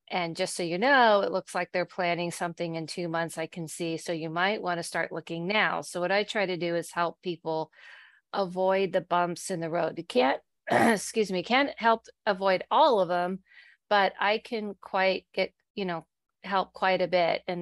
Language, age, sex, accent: English, 40-59, female, American